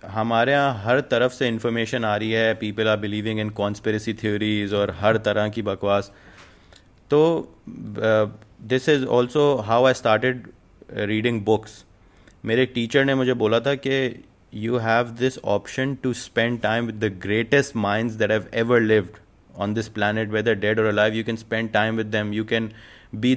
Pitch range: 105-125 Hz